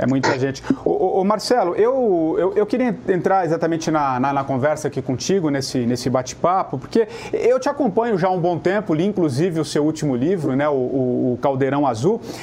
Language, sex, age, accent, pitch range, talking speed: English, male, 40-59, Brazilian, 155-225 Hz, 195 wpm